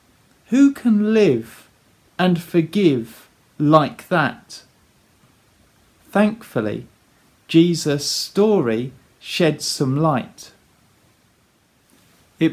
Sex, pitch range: male, 135-180 Hz